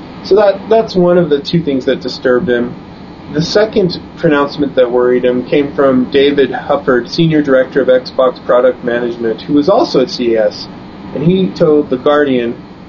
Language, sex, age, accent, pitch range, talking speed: English, male, 30-49, American, 125-170 Hz, 170 wpm